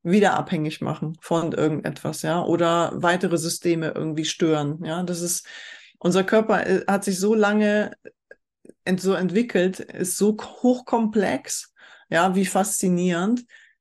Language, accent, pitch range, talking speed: German, German, 175-210 Hz, 125 wpm